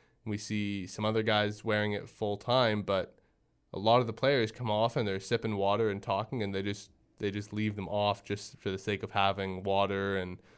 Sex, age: male, 20-39